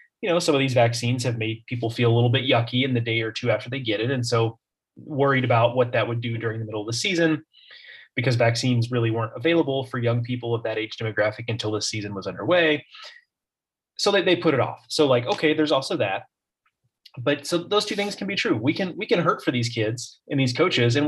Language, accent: English, American